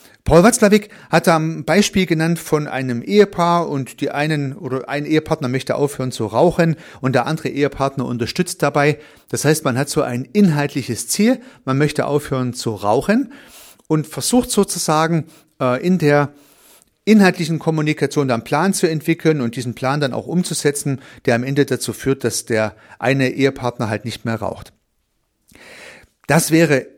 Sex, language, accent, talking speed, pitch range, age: male, German, German, 160 wpm, 130-165 Hz, 40-59